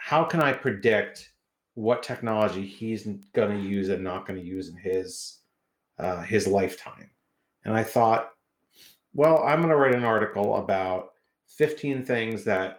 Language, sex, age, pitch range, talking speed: English, male, 40-59, 95-120 Hz, 160 wpm